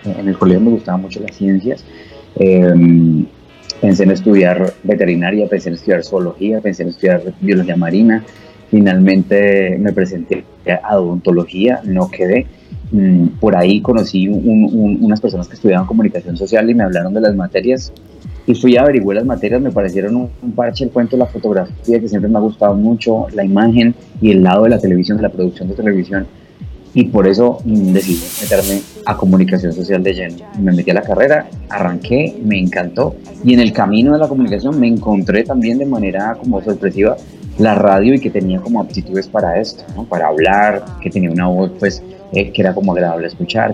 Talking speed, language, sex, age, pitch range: 185 wpm, Spanish, male, 30-49, 95-115 Hz